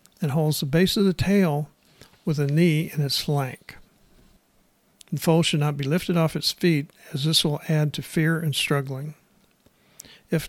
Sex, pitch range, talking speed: male, 145-170 Hz, 175 wpm